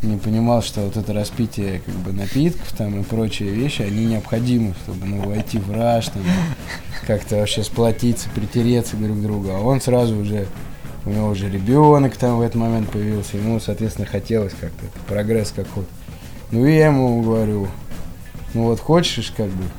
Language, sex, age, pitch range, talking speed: Russian, male, 20-39, 100-125 Hz, 170 wpm